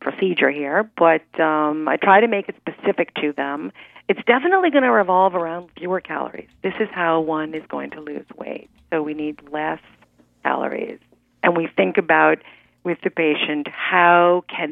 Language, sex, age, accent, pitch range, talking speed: English, female, 50-69, American, 160-210 Hz, 175 wpm